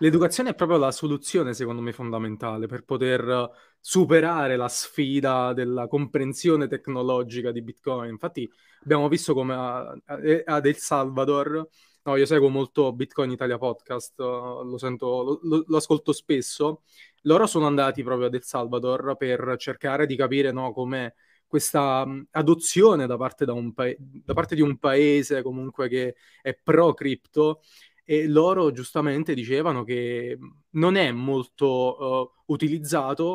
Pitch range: 130-155 Hz